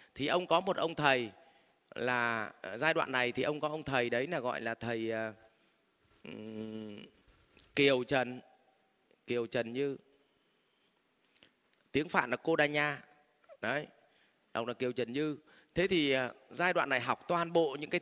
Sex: male